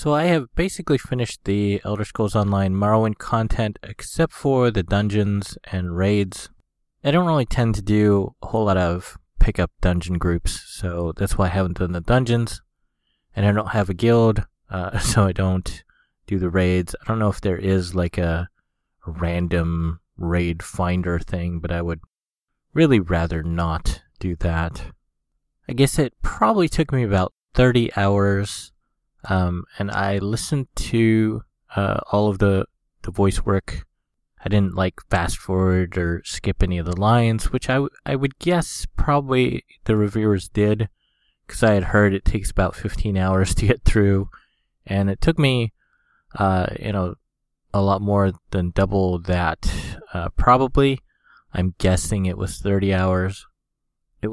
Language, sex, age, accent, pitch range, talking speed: English, male, 20-39, American, 90-110 Hz, 160 wpm